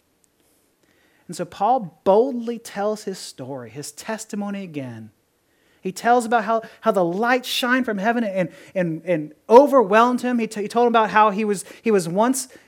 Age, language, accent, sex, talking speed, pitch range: 30-49, English, American, male, 175 wpm, 185-260 Hz